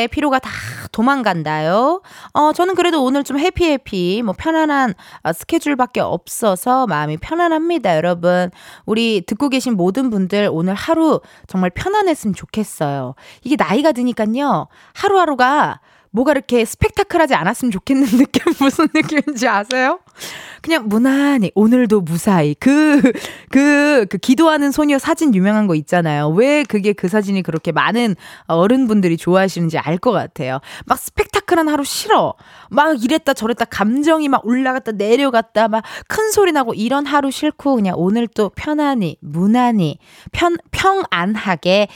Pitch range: 195-295 Hz